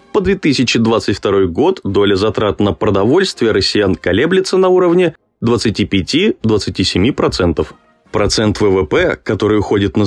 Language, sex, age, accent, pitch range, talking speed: Russian, male, 20-39, native, 100-165 Hz, 100 wpm